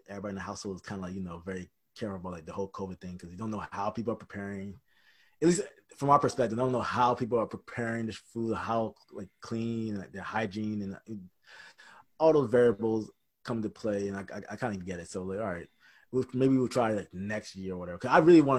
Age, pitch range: 20-39, 100-125 Hz